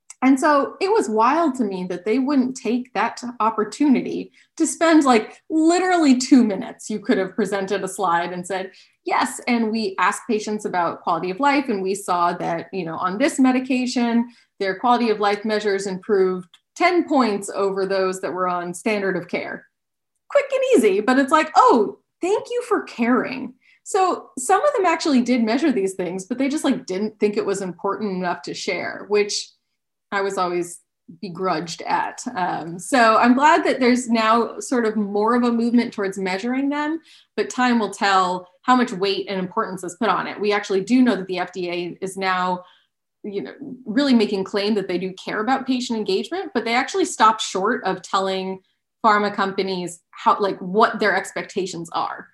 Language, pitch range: English, 190-260 Hz